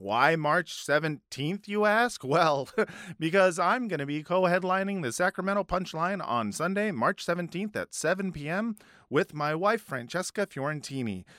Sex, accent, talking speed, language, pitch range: male, American, 140 wpm, English, 135-190 Hz